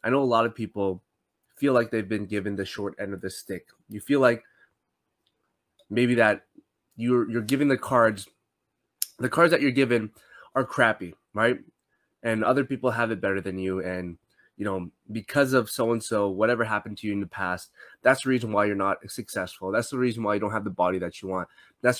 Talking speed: 205 wpm